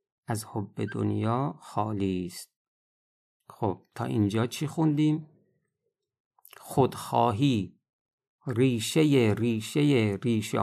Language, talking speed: Persian, 80 wpm